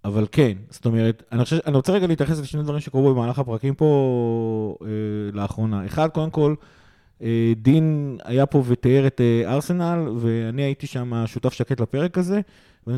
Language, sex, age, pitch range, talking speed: Hebrew, male, 30-49, 115-155 Hz, 170 wpm